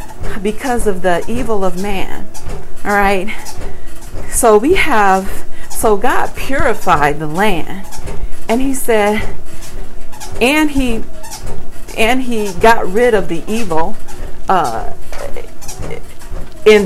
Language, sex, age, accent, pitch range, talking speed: English, female, 40-59, American, 160-215 Hz, 105 wpm